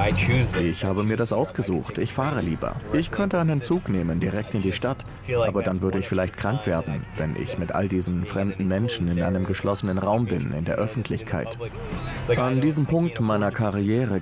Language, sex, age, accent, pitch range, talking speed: German, male, 30-49, German, 95-120 Hz, 185 wpm